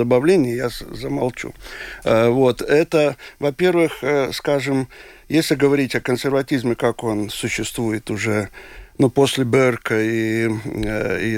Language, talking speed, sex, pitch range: Russian, 110 wpm, male, 125-160 Hz